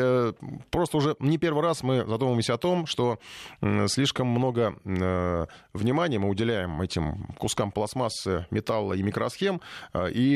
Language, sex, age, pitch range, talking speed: Russian, male, 20-39, 110-145 Hz, 145 wpm